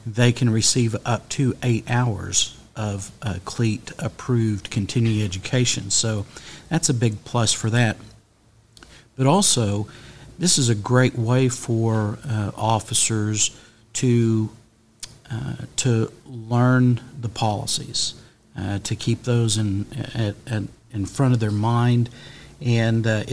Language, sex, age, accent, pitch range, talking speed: English, male, 50-69, American, 110-125 Hz, 125 wpm